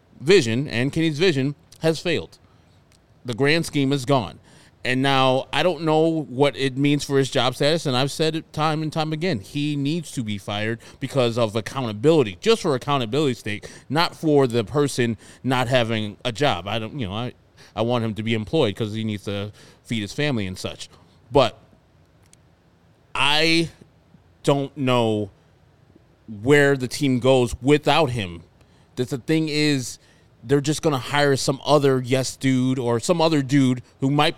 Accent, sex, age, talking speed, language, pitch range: American, male, 30-49, 175 wpm, English, 115-145 Hz